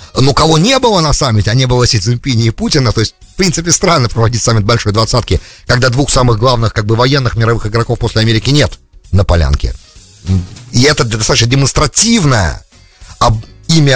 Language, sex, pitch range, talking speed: English, male, 100-145 Hz, 175 wpm